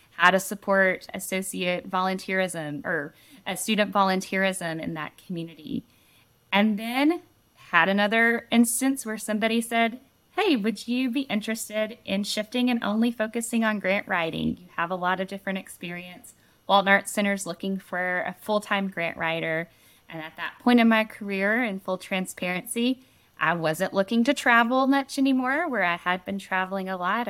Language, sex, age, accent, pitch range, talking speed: English, female, 10-29, American, 190-230 Hz, 165 wpm